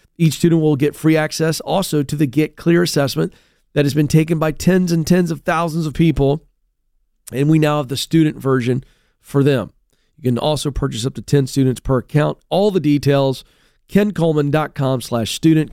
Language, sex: English, male